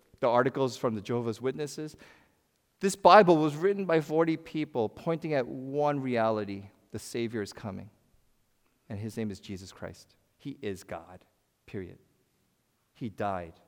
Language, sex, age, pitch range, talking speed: English, male, 40-59, 105-150 Hz, 145 wpm